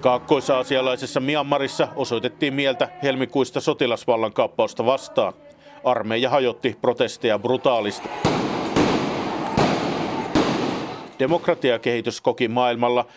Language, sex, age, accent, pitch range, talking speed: Finnish, male, 50-69, native, 110-140 Hz, 70 wpm